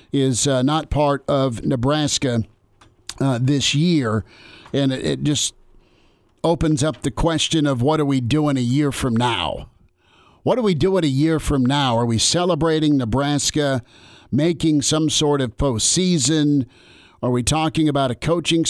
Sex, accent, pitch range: male, American, 125-150 Hz